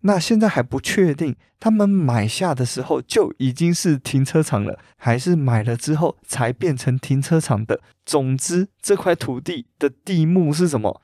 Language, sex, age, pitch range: Chinese, male, 20-39, 120-160 Hz